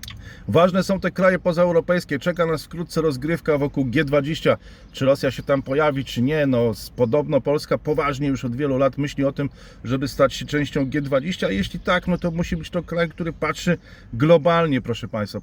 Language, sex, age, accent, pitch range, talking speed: Polish, male, 40-59, native, 120-155 Hz, 185 wpm